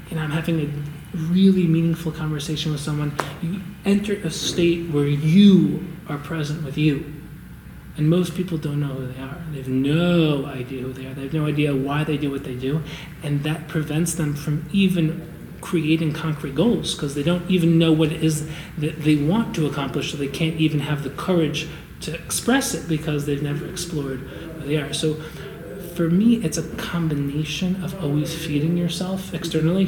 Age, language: 30-49, English